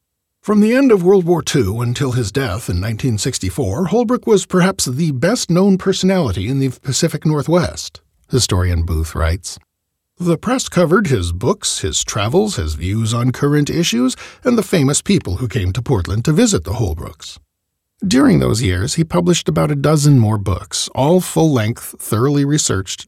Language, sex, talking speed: English, male, 165 wpm